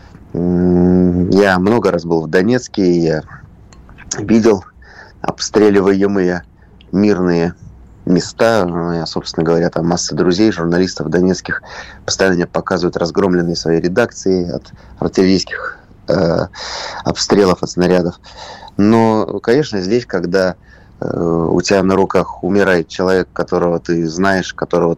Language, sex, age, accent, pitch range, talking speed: Russian, male, 30-49, native, 85-100 Hz, 110 wpm